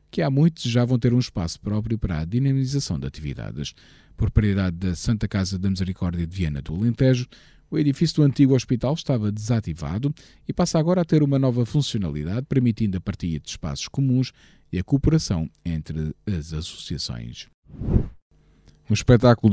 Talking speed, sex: 165 wpm, male